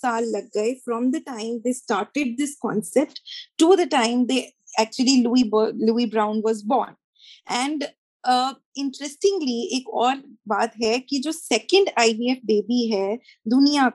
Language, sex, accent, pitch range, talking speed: Hindi, female, native, 230-280 Hz, 70 wpm